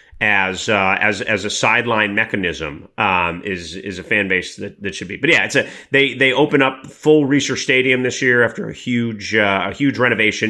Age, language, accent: 30-49, English, American